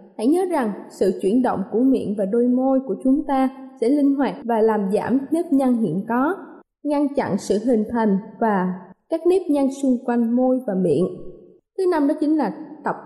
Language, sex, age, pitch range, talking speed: Vietnamese, female, 20-39, 220-280 Hz, 200 wpm